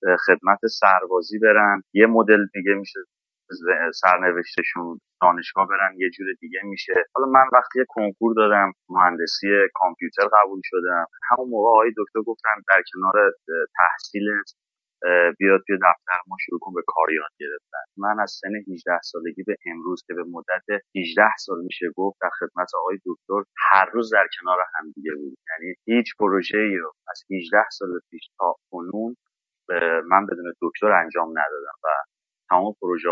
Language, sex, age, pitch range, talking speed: Persian, male, 30-49, 90-110 Hz, 150 wpm